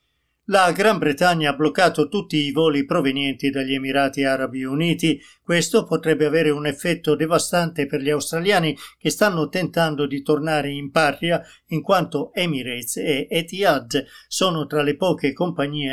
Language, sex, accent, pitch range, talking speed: Italian, male, native, 140-165 Hz, 145 wpm